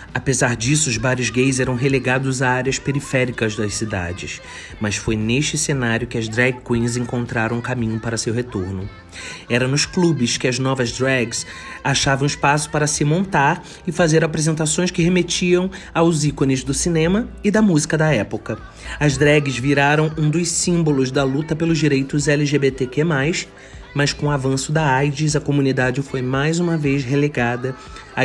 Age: 30-49